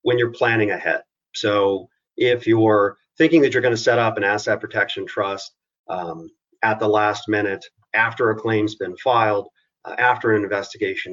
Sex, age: male, 40-59